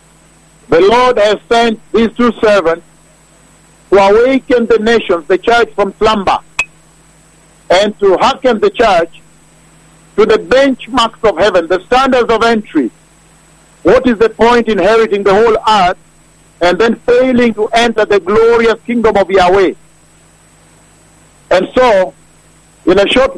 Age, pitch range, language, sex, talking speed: 50-69, 200-235 Hz, English, male, 135 wpm